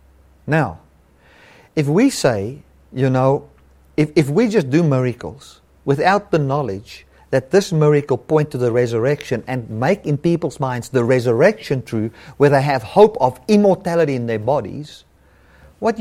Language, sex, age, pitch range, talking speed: English, male, 50-69, 105-165 Hz, 150 wpm